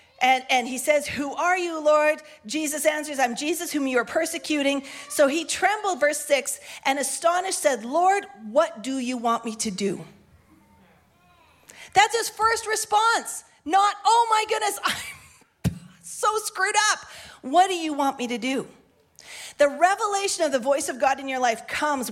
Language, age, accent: English, 40-59, American